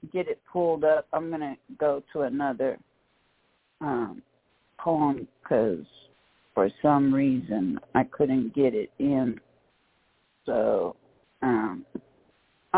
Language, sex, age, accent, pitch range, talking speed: English, female, 50-69, American, 160-195 Hz, 110 wpm